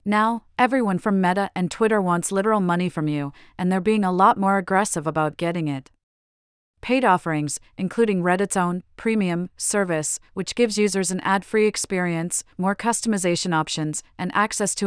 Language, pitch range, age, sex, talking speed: English, 165-210 Hz, 40-59, female, 160 wpm